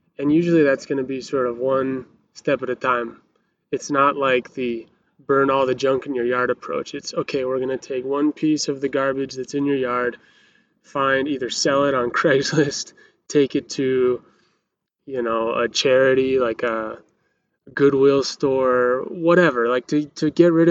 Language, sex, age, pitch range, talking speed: English, male, 20-39, 125-145 Hz, 185 wpm